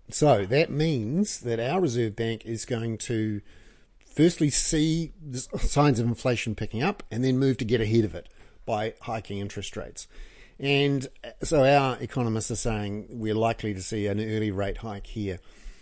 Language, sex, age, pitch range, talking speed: English, male, 40-59, 105-130 Hz, 165 wpm